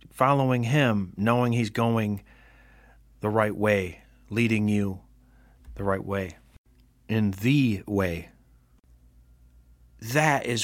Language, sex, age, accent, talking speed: English, male, 50-69, American, 100 wpm